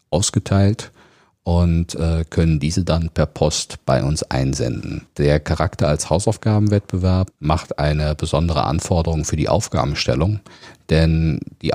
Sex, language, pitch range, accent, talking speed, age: male, German, 80-100 Hz, German, 115 wpm, 40-59